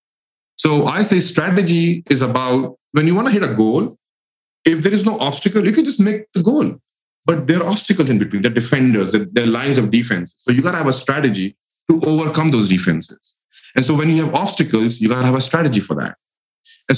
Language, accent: English, Indian